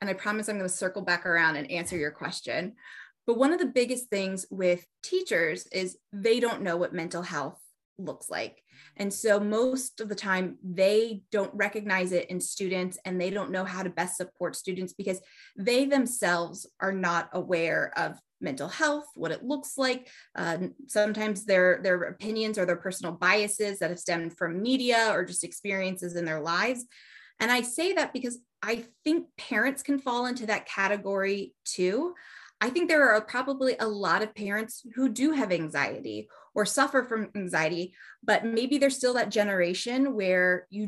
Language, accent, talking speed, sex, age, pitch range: English, American, 180 wpm, female, 20-39, 180-245 Hz